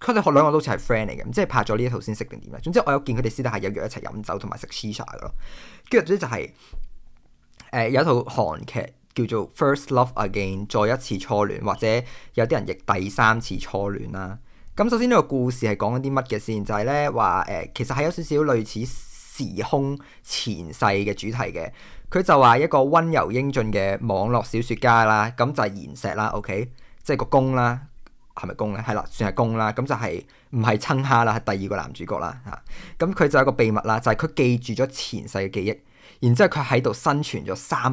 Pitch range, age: 105-135 Hz, 20-39